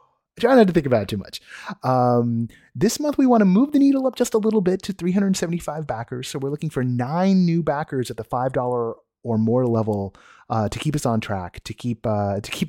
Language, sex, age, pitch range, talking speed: English, male, 30-49, 110-150 Hz, 235 wpm